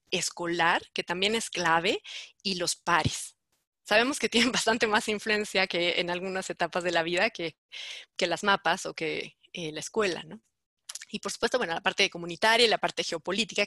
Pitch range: 180-240 Hz